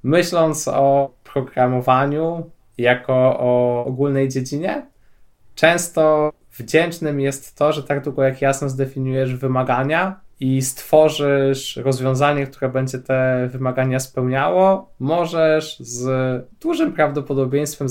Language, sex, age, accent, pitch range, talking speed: Polish, male, 20-39, native, 125-150 Hz, 100 wpm